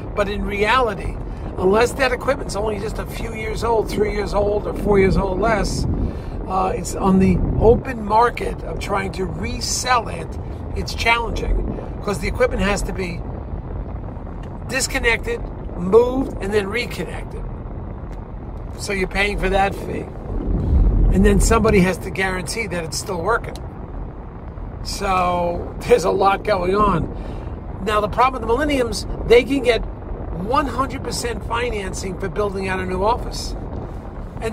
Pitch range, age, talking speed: 185-225 Hz, 50-69, 150 wpm